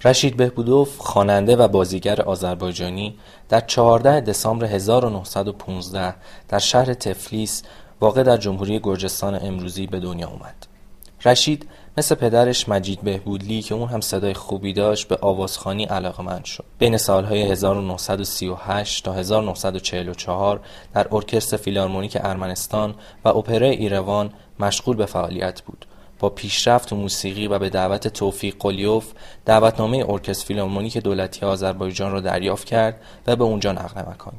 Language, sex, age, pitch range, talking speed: Persian, male, 20-39, 95-115 Hz, 130 wpm